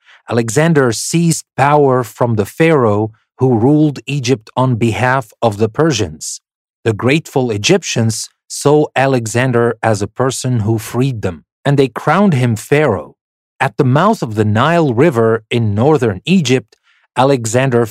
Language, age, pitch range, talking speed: English, 40-59, 115-150 Hz, 135 wpm